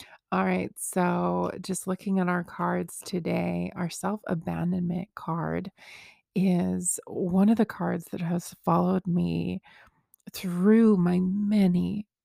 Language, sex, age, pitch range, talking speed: English, female, 30-49, 175-195 Hz, 125 wpm